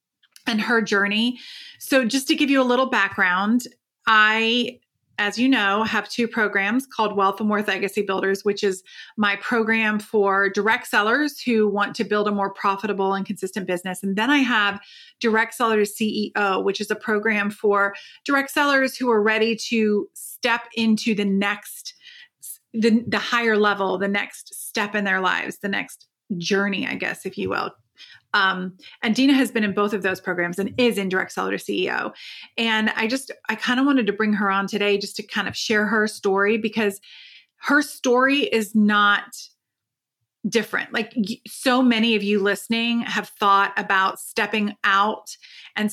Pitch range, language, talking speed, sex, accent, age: 200-230 Hz, English, 175 wpm, female, American, 30-49